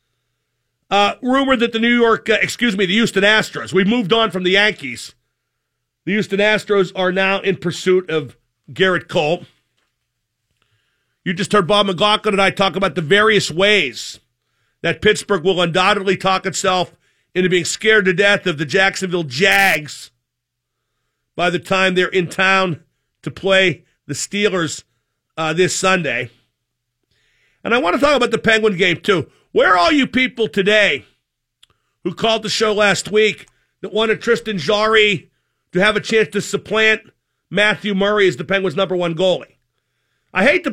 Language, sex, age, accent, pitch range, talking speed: English, male, 50-69, American, 180-215 Hz, 165 wpm